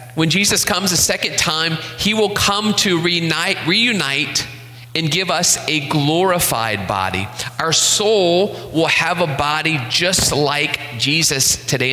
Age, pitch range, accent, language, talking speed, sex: 30-49, 120-150 Hz, American, English, 135 wpm, male